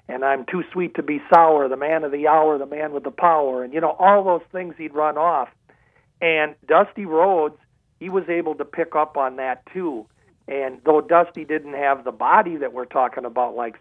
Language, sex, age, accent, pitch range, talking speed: English, male, 50-69, American, 130-170 Hz, 215 wpm